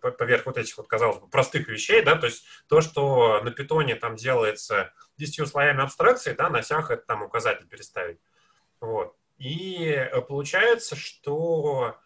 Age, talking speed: 20-39, 160 wpm